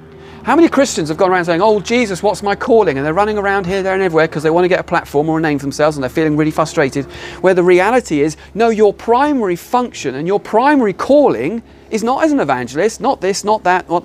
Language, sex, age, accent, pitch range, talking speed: English, male, 40-59, British, 120-185 Hz, 250 wpm